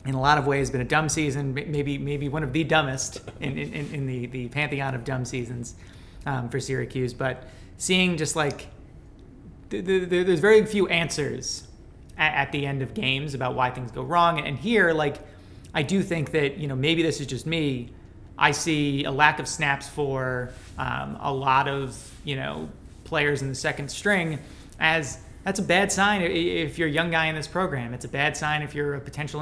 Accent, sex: American, male